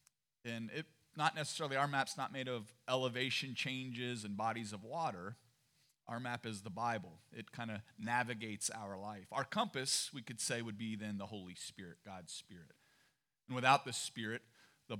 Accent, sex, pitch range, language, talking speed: American, male, 110-135 Hz, English, 175 wpm